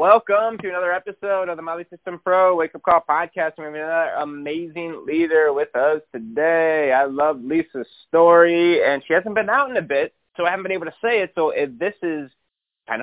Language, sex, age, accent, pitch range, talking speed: English, male, 30-49, American, 105-170 Hz, 210 wpm